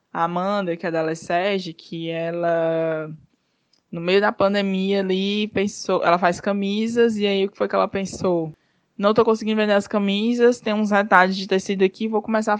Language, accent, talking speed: Portuguese, Brazilian, 195 wpm